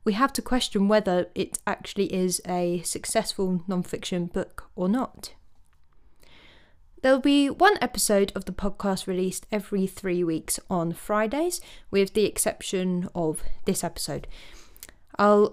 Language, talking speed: English, 130 wpm